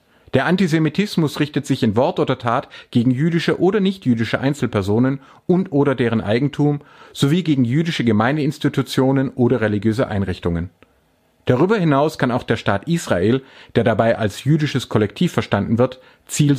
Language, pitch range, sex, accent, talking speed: German, 110-145 Hz, male, German, 140 wpm